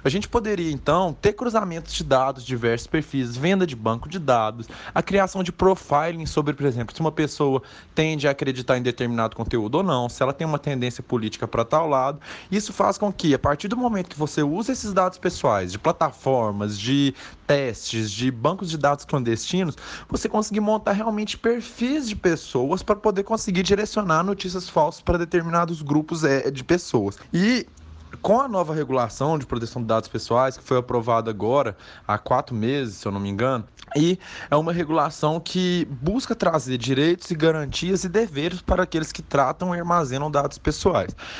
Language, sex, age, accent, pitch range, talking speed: Portuguese, male, 20-39, Brazilian, 135-185 Hz, 180 wpm